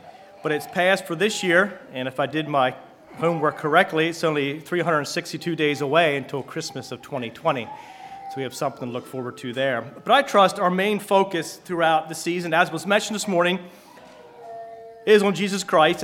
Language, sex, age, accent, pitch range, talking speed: English, male, 30-49, American, 140-180 Hz, 185 wpm